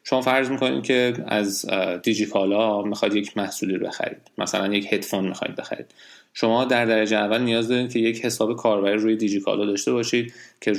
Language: Persian